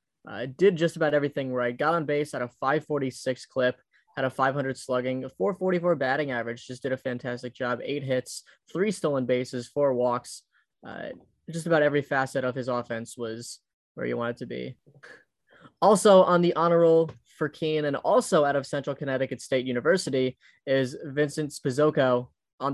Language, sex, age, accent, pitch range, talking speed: English, male, 10-29, American, 130-155 Hz, 175 wpm